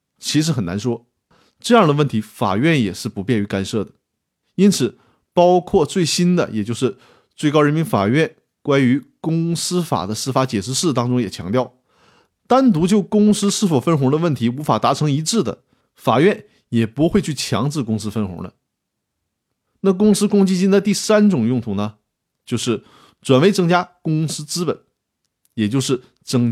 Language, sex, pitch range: Chinese, male, 115-180 Hz